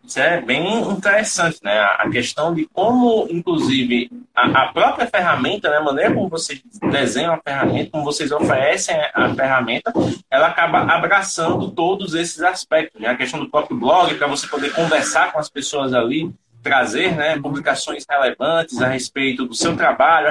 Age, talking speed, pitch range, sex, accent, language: 20-39, 165 wpm, 160-225 Hz, male, Brazilian, Portuguese